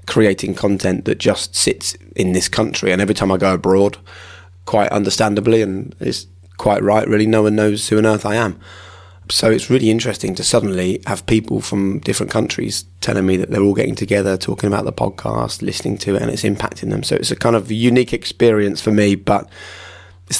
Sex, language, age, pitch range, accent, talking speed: male, English, 20-39, 95-105 Hz, British, 205 wpm